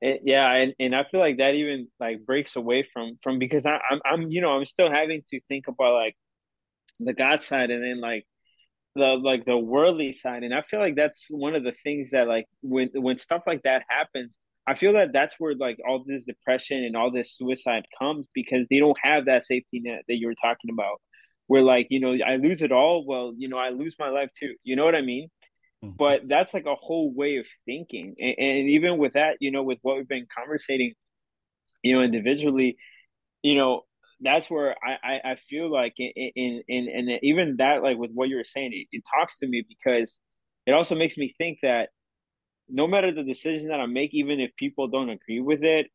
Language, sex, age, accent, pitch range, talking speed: English, male, 20-39, American, 125-145 Hz, 225 wpm